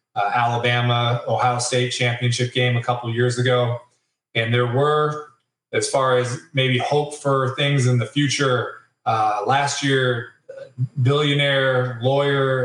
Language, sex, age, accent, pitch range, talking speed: English, male, 20-39, American, 120-135 Hz, 130 wpm